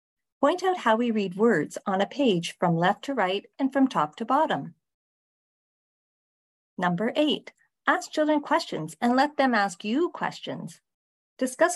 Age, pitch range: 40-59, 175-250 Hz